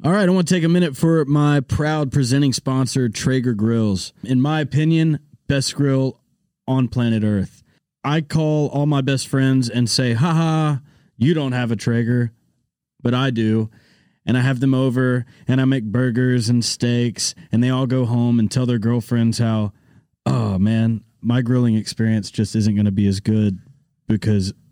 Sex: male